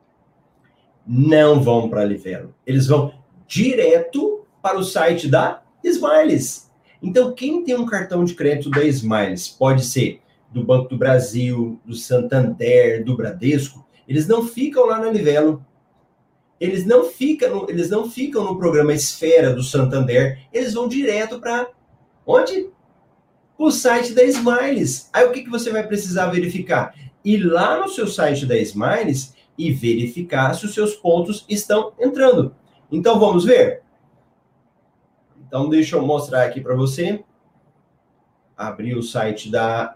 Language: Portuguese